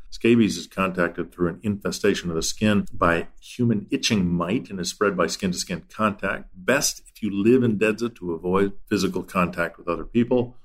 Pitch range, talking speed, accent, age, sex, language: 85-105 Hz, 180 wpm, American, 50-69, male, English